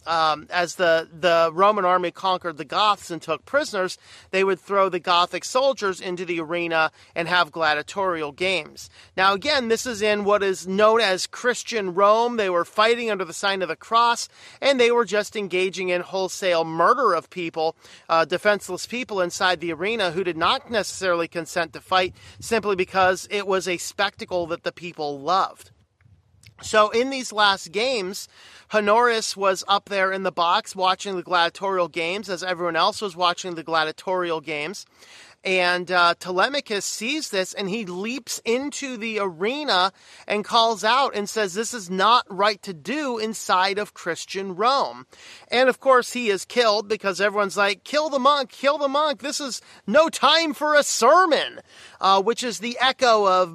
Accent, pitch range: American, 175-220 Hz